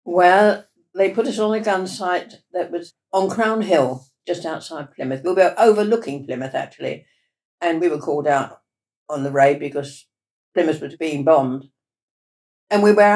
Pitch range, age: 140-185 Hz, 60-79